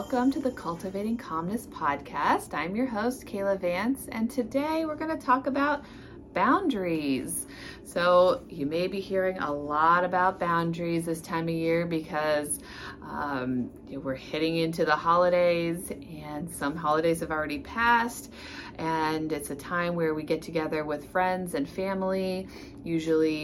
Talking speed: 150 wpm